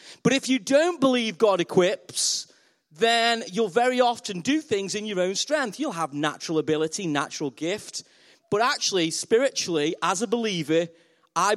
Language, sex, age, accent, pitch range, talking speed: English, male, 30-49, British, 165-230 Hz, 155 wpm